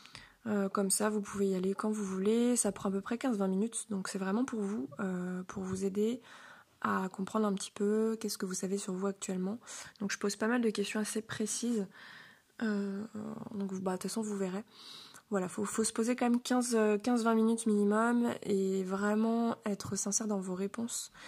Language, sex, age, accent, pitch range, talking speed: French, female, 20-39, French, 195-220 Hz, 205 wpm